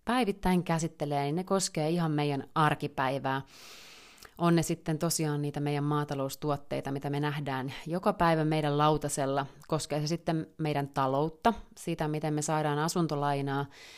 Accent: native